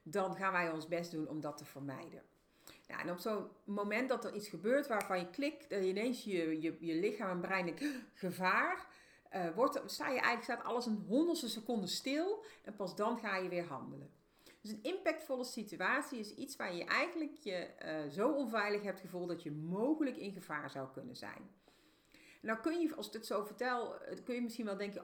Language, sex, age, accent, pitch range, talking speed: Dutch, female, 40-59, Dutch, 165-240 Hz, 210 wpm